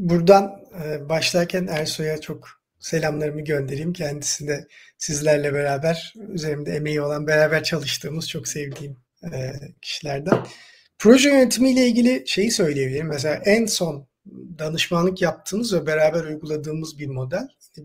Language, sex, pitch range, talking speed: Turkish, male, 150-200 Hz, 115 wpm